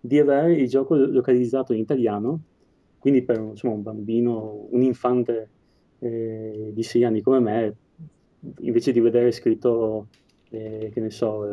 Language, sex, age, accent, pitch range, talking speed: Italian, male, 20-39, native, 105-125 Hz, 145 wpm